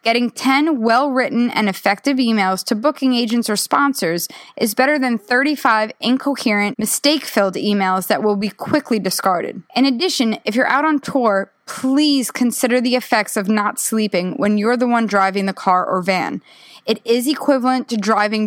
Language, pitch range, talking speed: English, 205-260 Hz, 165 wpm